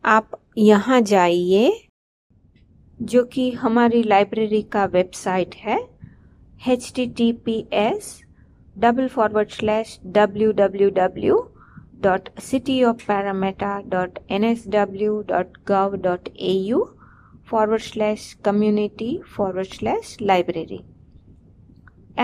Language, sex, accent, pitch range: English, female, Indian, 195-235 Hz